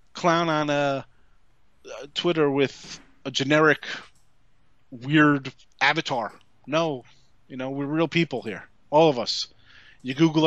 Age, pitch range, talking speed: 30-49, 140-170 Hz, 125 wpm